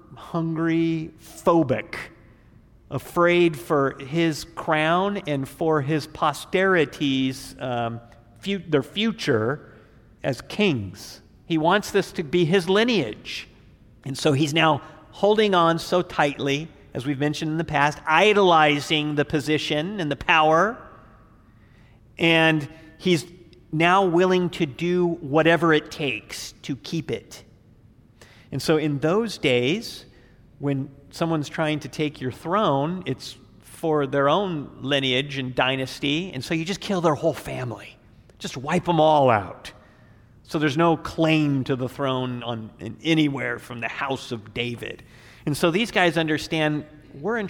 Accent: American